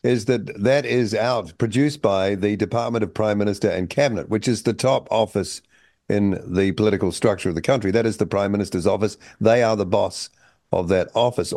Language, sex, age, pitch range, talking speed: English, male, 50-69, 95-110 Hz, 200 wpm